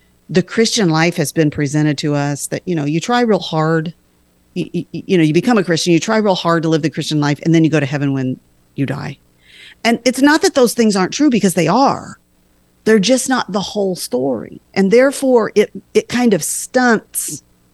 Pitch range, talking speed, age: 165-215 Hz, 220 wpm, 40-59